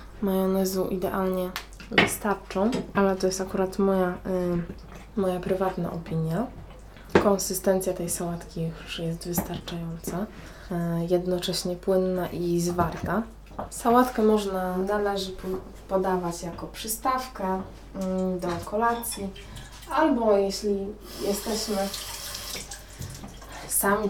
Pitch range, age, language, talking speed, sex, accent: 175-200 Hz, 20-39, Polish, 80 wpm, female, native